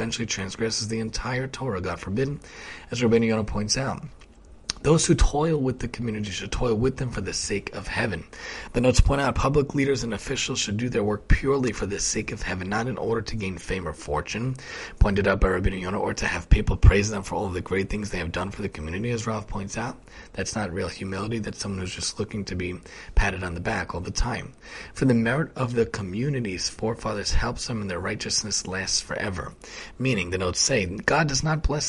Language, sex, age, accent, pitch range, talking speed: English, male, 30-49, American, 95-125 Hz, 220 wpm